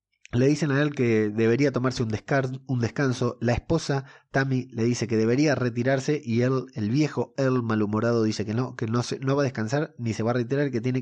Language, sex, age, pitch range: Spanish, male, 30-49, 110-140 Hz